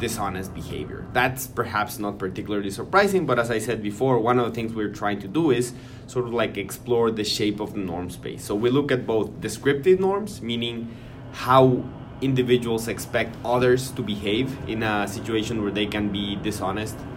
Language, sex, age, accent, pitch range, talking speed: English, male, 20-39, Mexican, 105-130 Hz, 185 wpm